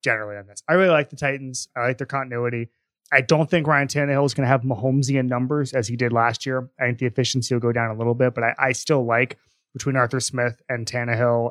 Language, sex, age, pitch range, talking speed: English, male, 20-39, 115-135 Hz, 250 wpm